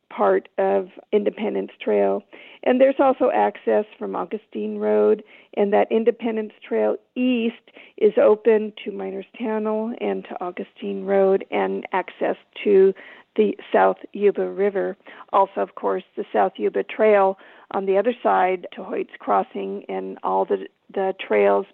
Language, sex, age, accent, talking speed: English, female, 50-69, American, 140 wpm